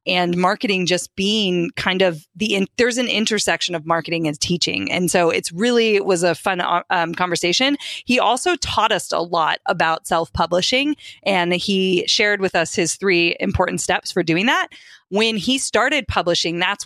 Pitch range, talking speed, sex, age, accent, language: 175-235 Hz, 180 wpm, female, 20-39, American, English